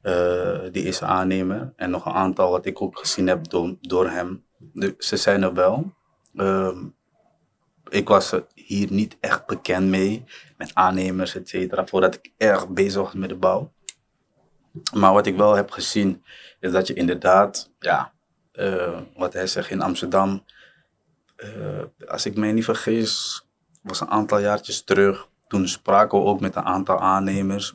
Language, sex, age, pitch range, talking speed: Dutch, male, 20-39, 95-100 Hz, 165 wpm